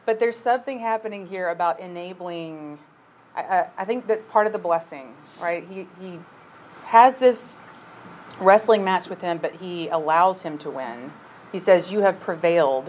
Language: English